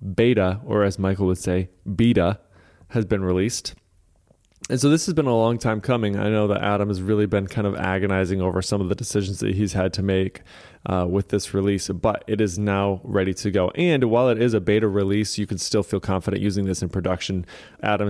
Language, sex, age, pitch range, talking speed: English, male, 20-39, 95-110 Hz, 220 wpm